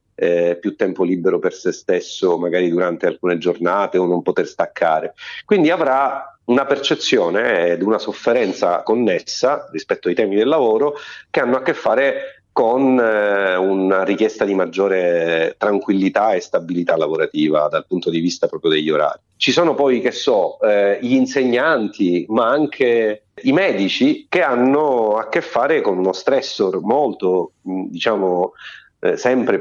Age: 40-59